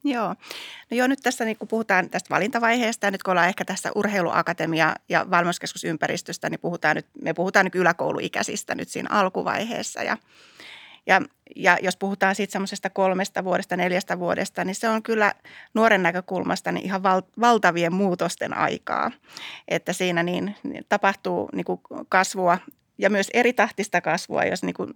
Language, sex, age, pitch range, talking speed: Finnish, female, 30-49, 175-210 Hz, 150 wpm